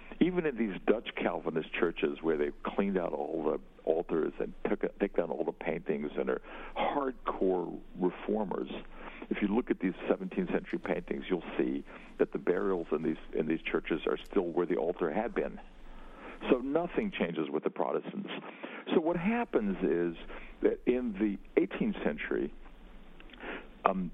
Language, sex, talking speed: English, male, 155 wpm